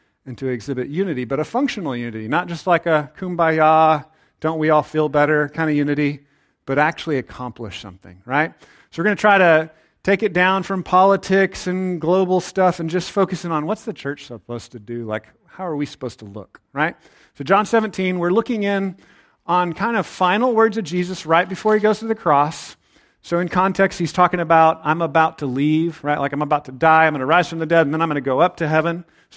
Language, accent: English, American